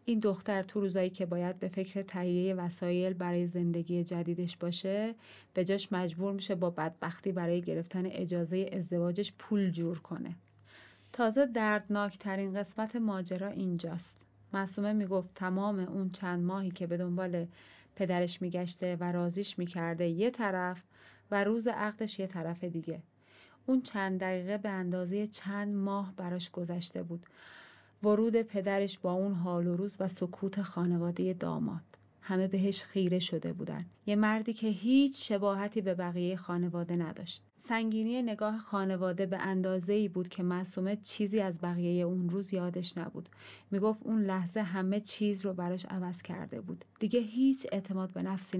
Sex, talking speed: female, 150 wpm